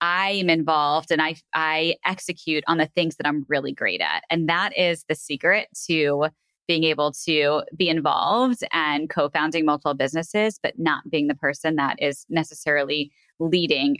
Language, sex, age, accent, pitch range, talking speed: English, female, 20-39, American, 160-205 Hz, 165 wpm